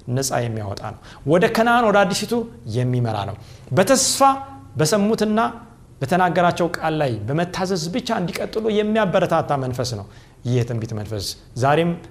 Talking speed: 120 wpm